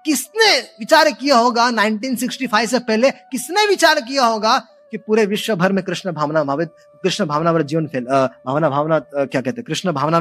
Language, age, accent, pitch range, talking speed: Hindi, 20-39, native, 220-320 Hz, 205 wpm